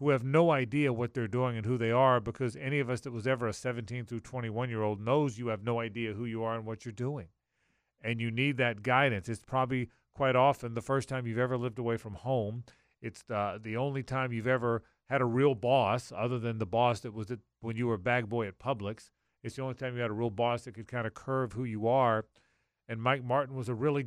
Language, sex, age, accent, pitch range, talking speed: English, male, 40-59, American, 115-135 Hz, 250 wpm